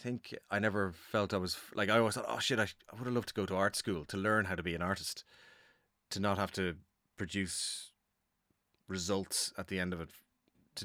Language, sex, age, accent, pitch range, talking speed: English, male, 30-49, Irish, 90-105 Hz, 225 wpm